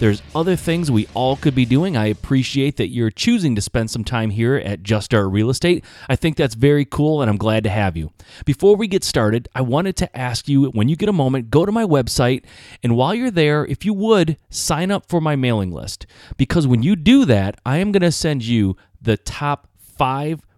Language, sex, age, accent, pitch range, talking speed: English, male, 30-49, American, 105-150 Hz, 230 wpm